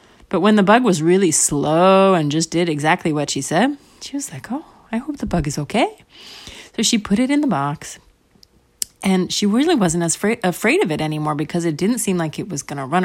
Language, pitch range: English, 165-240 Hz